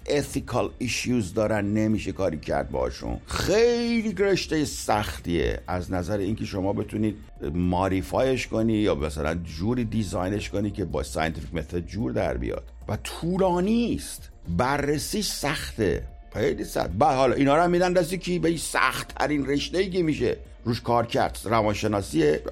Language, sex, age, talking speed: Persian, male, 60-79, 145 wpm